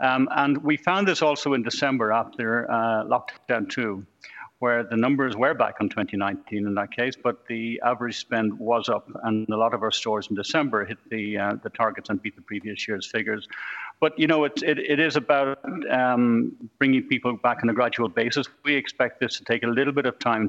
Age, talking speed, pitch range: 60-79, 215 wpm, 110-130 Hz